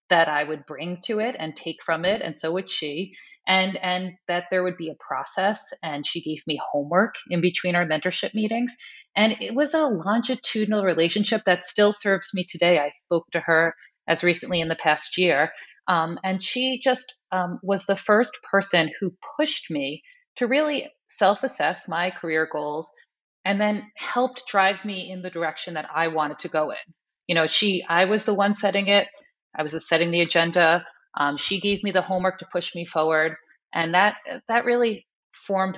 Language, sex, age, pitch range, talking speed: English, female, 30-49, 165-210 Hz, 190 wpm